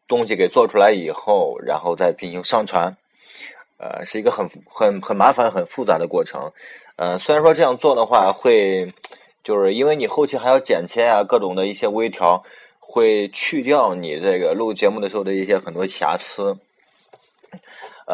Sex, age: male, 20-39